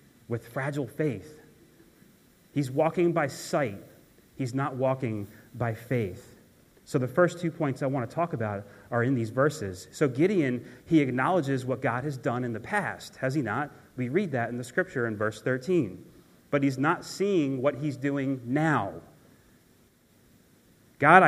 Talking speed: 165 wpm